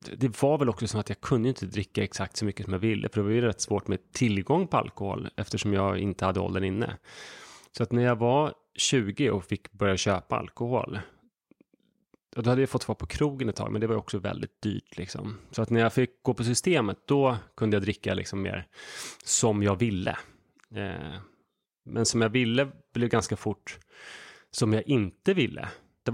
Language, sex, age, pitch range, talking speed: Swedish, male, 30-49, 100-120 Hz, 200 wpm